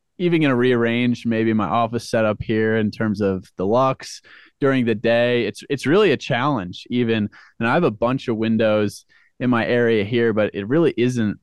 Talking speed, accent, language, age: 195 wpm, American, English, 20-39